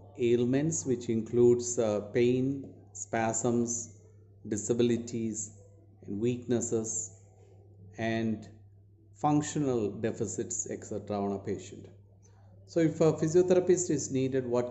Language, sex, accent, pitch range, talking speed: Malayalam, male, native, 105-135 Hz, 95 wpm